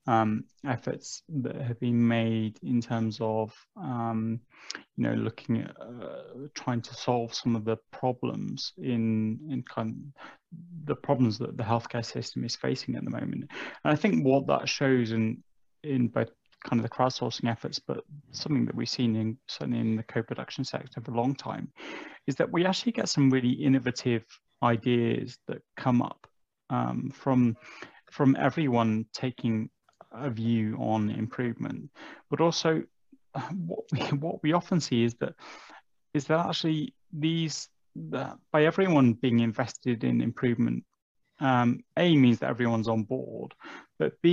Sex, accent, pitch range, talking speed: male, British, 115-145 Hz, 155 wpm